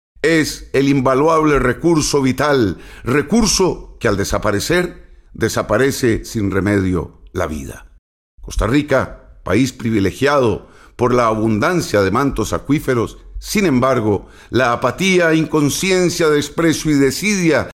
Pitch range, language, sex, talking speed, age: 110-150 Hz, Spanish, male, 110 wpm, 50-69